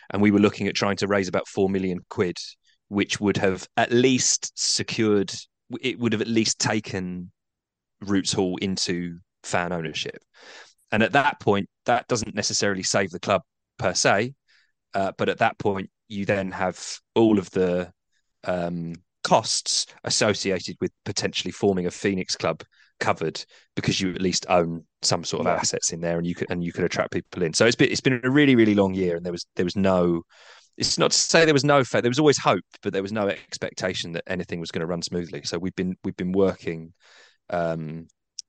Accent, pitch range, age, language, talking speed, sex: British, 85-105 Hz, 30-49, English, 200 wpm, male